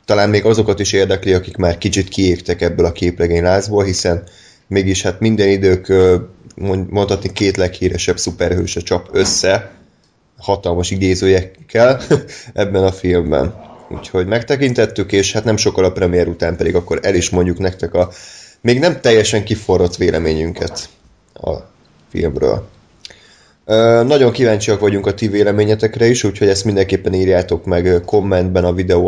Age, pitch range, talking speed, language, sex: 20-39, 90-105 Hz, 145 wpm, Hungarian, male